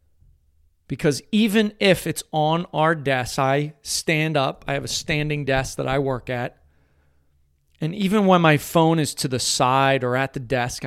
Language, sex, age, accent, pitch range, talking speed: English, male, 40-59, American, 100-150 Hz, 175 wpm